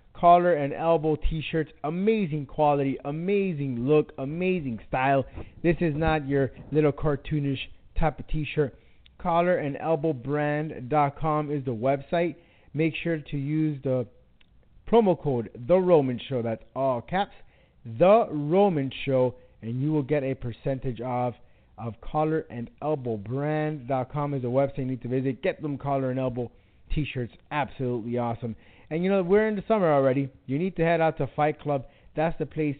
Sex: male